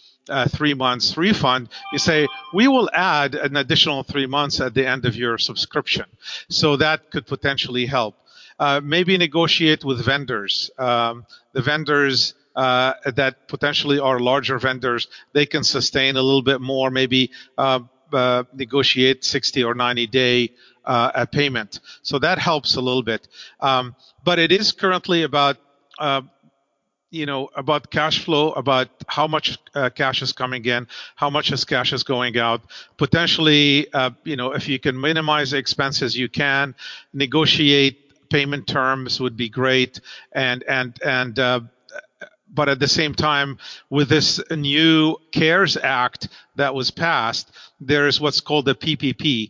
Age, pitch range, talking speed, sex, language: 50-69, 130-150 Hz, 155 wpm, male, English